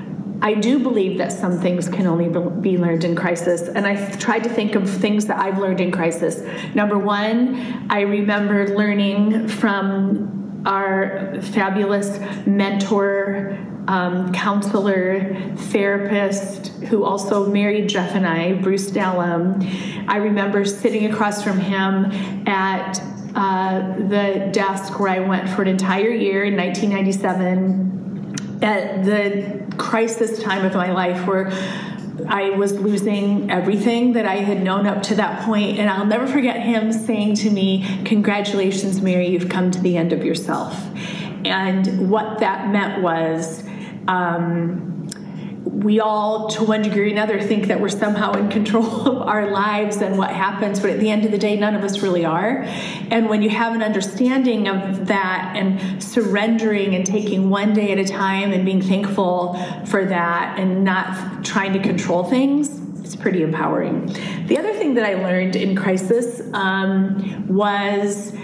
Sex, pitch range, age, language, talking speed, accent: female, 190-210 Hz, 30-49, English, 155 wpm, American